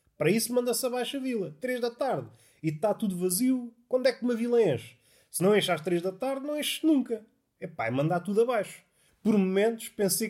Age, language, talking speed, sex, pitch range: 30-49, Portuguese, 210 wpm, male, 155-235 Hz